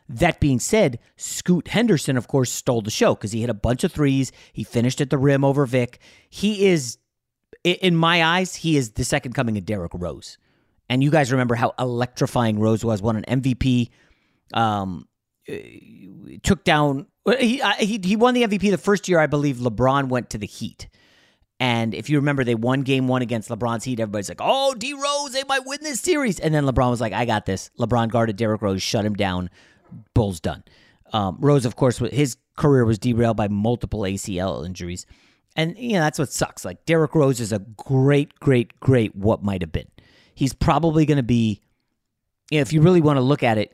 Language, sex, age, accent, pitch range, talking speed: English, male, 30-49, American, 115-155 Hz, 205 wpm